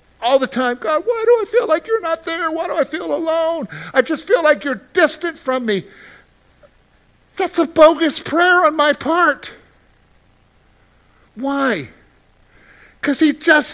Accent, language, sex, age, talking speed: American, English, male, 50-69, 155 wpm